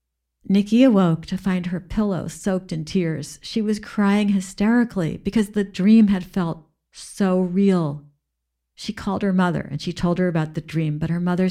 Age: 50-69